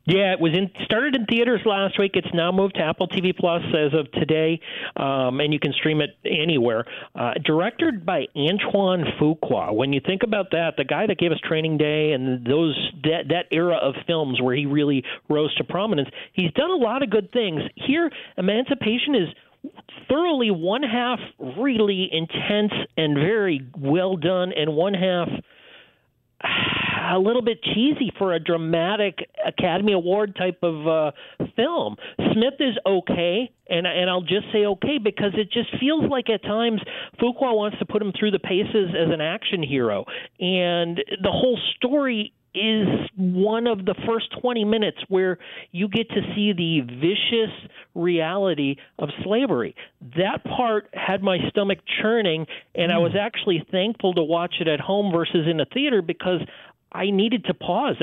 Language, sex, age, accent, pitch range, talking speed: English, male, 40-59, American, 165-215 Hz, 170 wpm